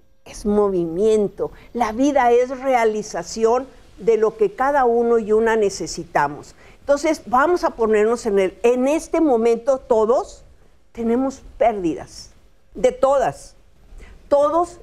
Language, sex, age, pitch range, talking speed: Spanish, female, 50-69, 225-285 Hz, 115 wpm